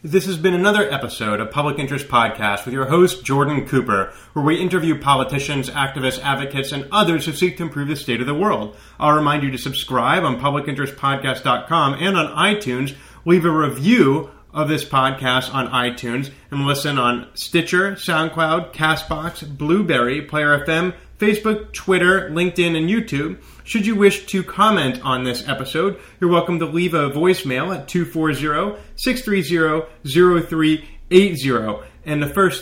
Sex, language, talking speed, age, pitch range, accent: male, English, 150 wpm, 30-49, 135-175 Hz, American